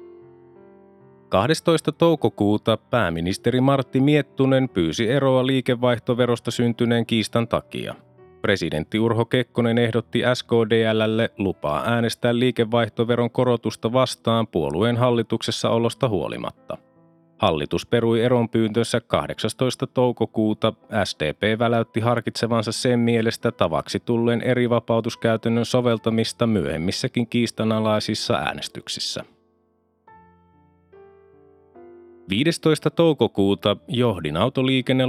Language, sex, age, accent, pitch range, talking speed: Finnish, male, 30-49, native, 110-130 Hz, 80 wpm